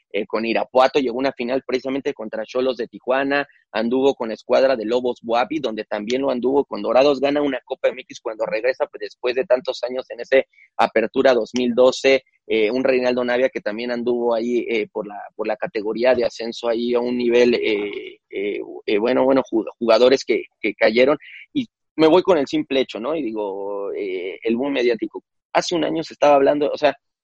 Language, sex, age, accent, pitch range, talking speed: Spanish, male, 30-49, Mexican, 125-180 Hz, 200 wpm